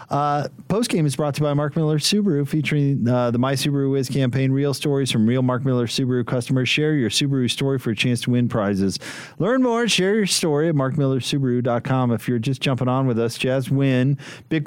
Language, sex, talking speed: English, male, 215 wpm